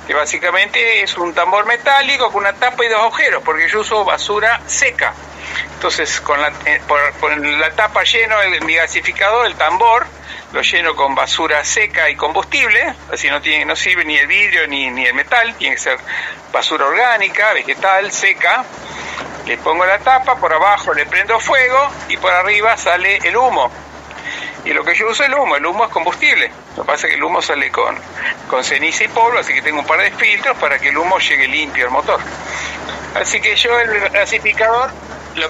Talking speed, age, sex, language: 200 wpm, 60-79, male, Spanish